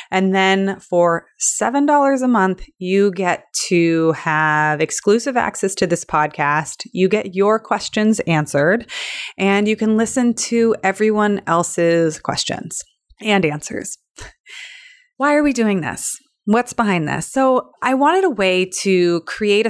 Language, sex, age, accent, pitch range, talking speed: English, female, 30-49, American, 170-220 Hz, 135 wpm